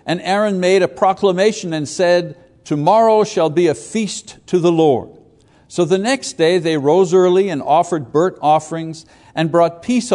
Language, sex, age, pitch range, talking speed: English, male, 60-79, 155-195 Hz, 170 wpm